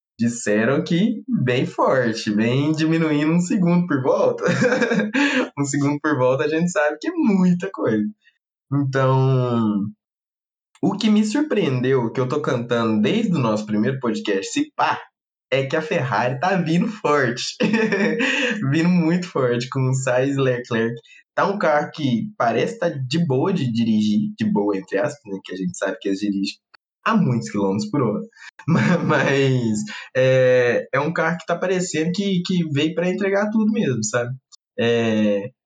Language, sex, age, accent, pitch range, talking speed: Portuguese, male, 20-39, Brazilian, 120-180 Hz, 160 wpm